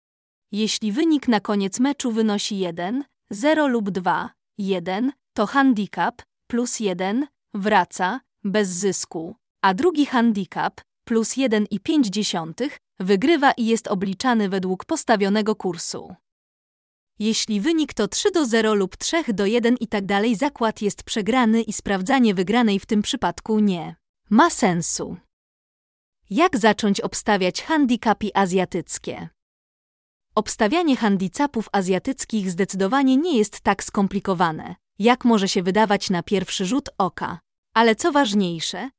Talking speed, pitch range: 120 wpm, 190-245 Hz